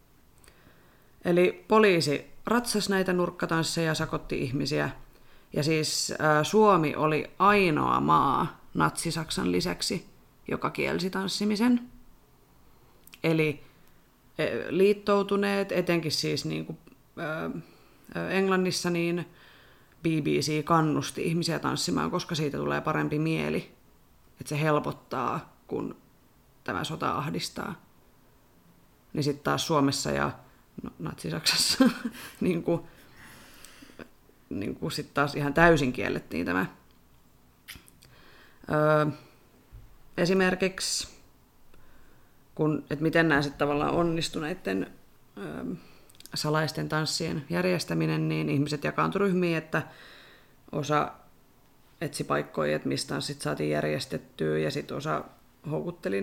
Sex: female